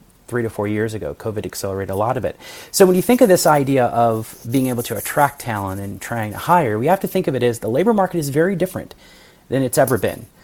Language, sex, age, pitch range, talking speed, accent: English, male, 30-49, 115-150 Hz, 260 wpm, American